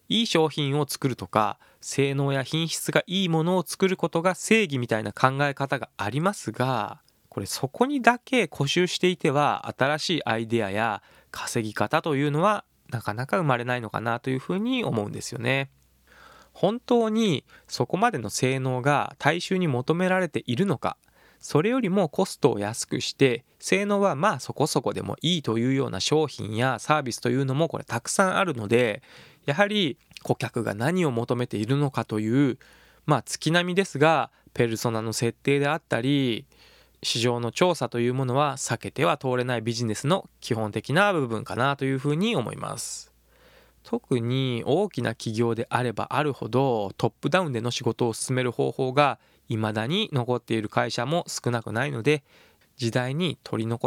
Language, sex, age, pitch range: Japanese, male, 20-39, 120-160 Hz